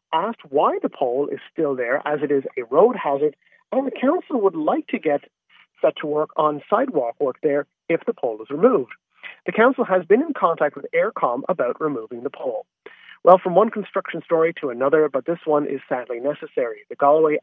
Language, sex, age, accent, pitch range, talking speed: English, male, 40-59, American, 150-225 Hz, 205 wpm